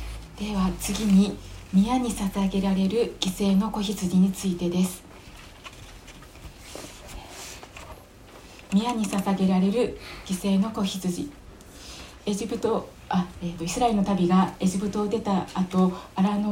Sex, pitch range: female, 185-220 Hz